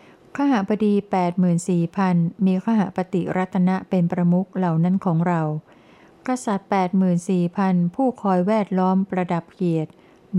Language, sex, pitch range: Thai, female, 170-195 Hz